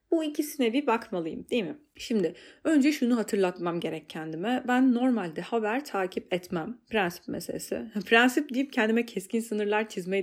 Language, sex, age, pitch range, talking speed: Turkish, female, 30-49, 190-290 Hz, 145 wpm